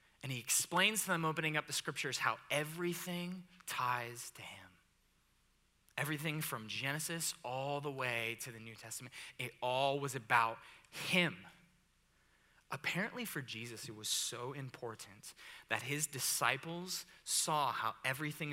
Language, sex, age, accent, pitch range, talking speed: English, male, 20-39, American, 125-165 Hz, 135 wpm